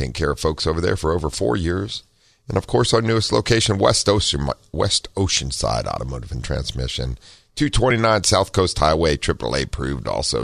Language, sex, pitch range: English, male, 70-95 Hz